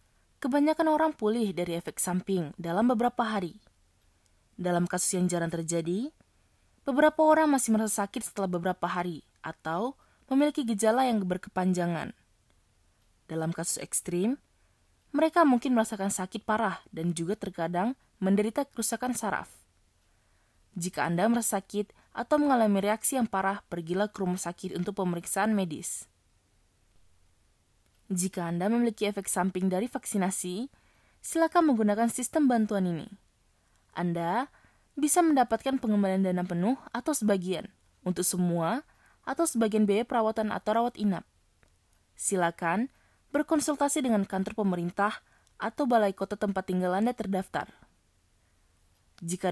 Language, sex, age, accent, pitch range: Japanese, female, 20-39, Indonesian, 170-235 Hz